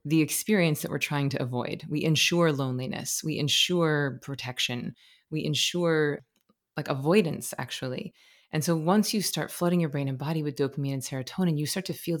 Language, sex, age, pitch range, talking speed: English, female, 30-49, 135-165 Hz, 175 wpm